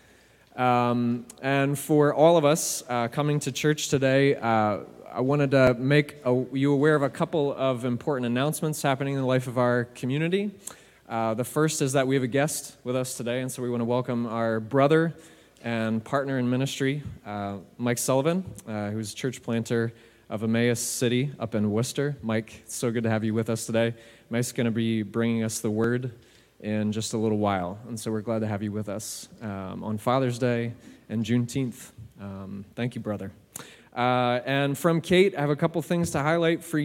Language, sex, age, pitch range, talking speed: English, male, 20-39, 115-150 Hz, 200 wpm